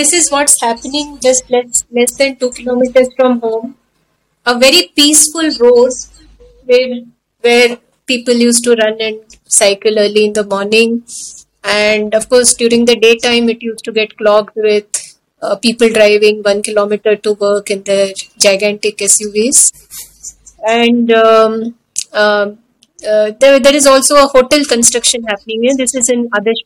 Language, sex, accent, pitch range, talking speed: English, female, Indian, 210-250 Hz, 155 wpm